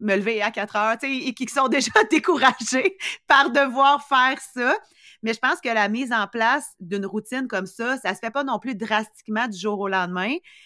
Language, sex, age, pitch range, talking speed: French, female, 30-49, 185-240 Hz, 220 wpm